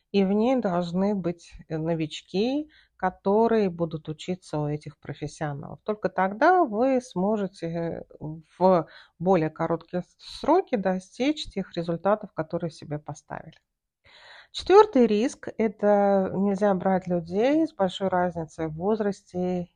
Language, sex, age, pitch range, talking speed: Russian, female, 40-59, 170-215 Hz, 115 wpm